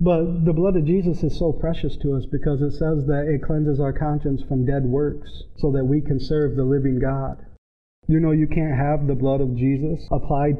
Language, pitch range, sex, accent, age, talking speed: English, 135-160 Hz, male, American, 40-59, 220 wpm